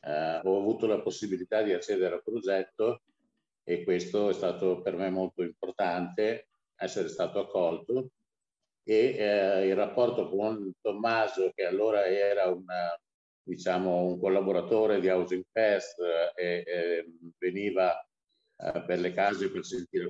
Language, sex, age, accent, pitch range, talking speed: Italian, male, 50-69, native, 90-120 Hz, 120 wpm